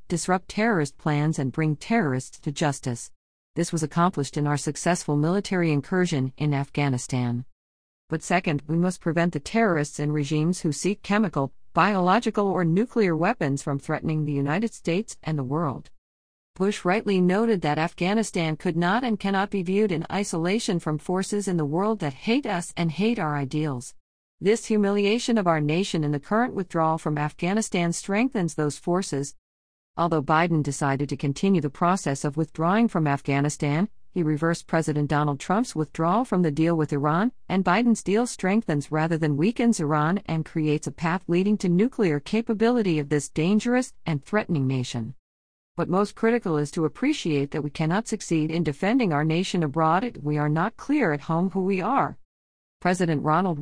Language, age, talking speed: English, 50-69, 170 wpm